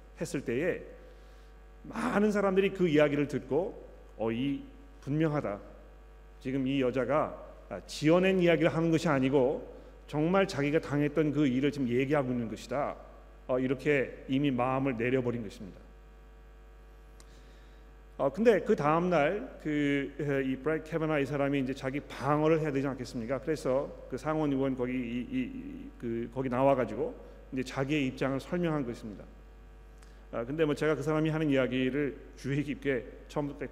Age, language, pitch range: 40-59, Korean, 130-160 Hz